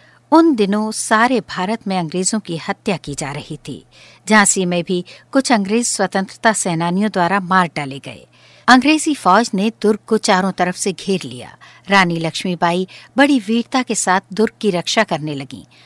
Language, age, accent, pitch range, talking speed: Hindi, 60-79, native, 175-220 Hz, 165 wpm